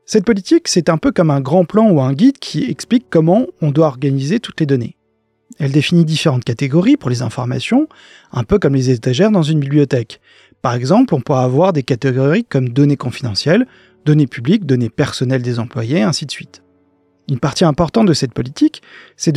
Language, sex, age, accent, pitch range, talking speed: French, male, 30-49, French, 130-180 Hz, 190 wpm